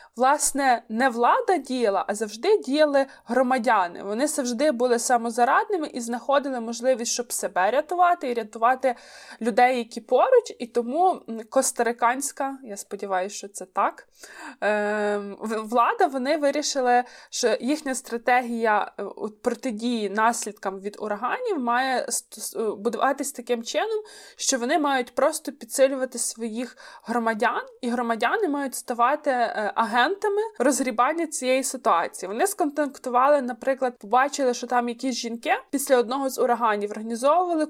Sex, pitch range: female, 230-280 Hz